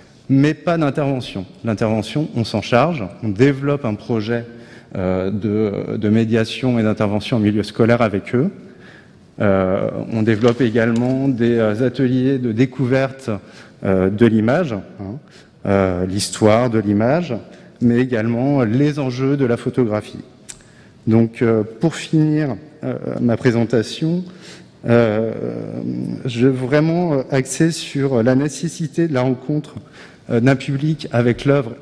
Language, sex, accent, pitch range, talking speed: French, male, French, 110-140 Hz, 125 wpm